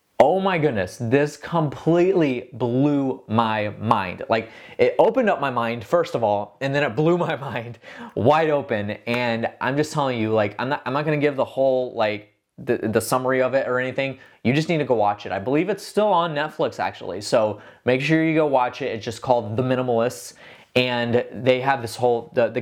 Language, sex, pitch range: English, male, 115-150 Hz